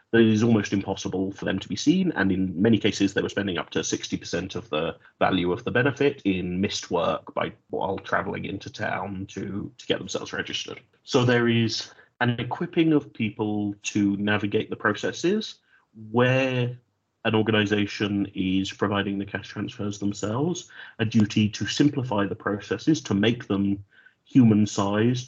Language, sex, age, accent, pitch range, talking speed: English, male, 30-49, British, 100-125 Hz, 160 wpm